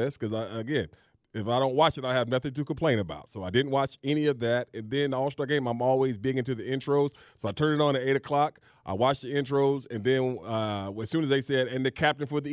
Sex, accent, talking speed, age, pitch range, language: male, American, 270 wpm, 30-49, 120-150 Hz, English